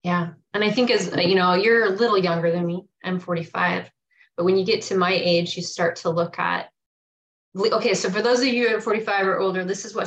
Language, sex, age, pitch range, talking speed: English, female, 20-39, 175-210 Hz, 245 wpm